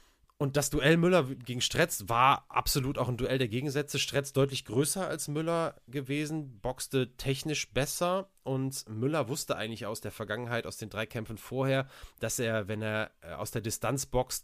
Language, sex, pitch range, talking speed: German, male, 125-145 Hz, 175 wpm